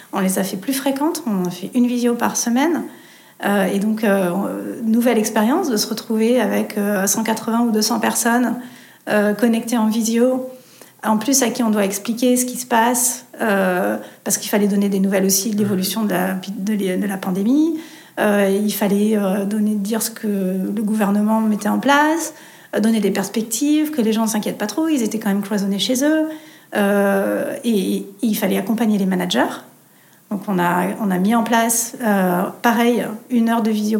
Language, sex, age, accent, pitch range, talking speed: French, female, 40-59, French, 200-235 Hz, 200 wpm